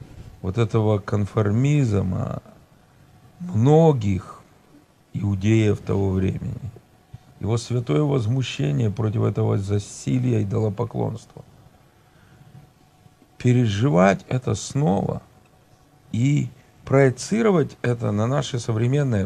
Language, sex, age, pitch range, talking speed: Russian, male, 50-69, 110-145 Hz, 75 wpm